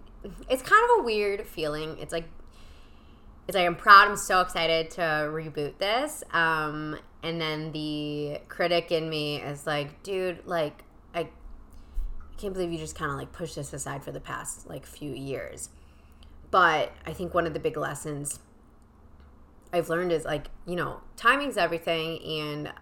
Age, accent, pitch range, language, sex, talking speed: 20-39, American, 140-180 Hz, English, female, 165 wpm